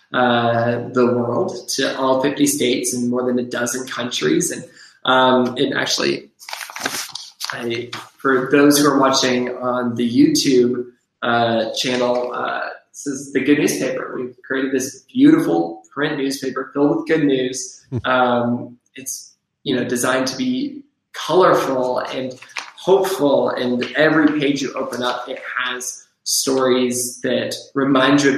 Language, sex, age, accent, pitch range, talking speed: English, male, 20-39, American, 125-140 Hz, 140 wpm